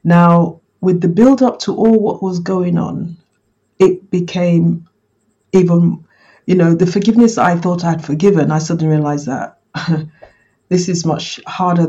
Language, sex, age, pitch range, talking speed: English, female, 50-69, 170-205 Hz, 145 wpm